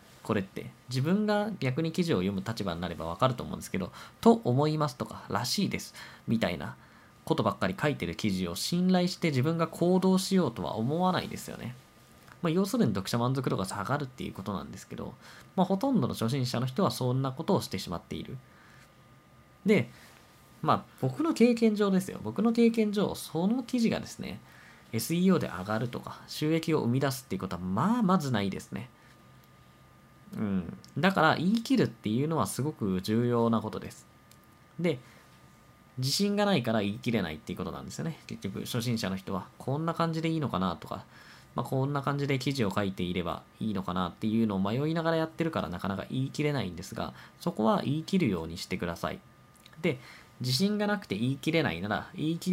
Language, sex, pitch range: Japanese, male, 110-175 Hz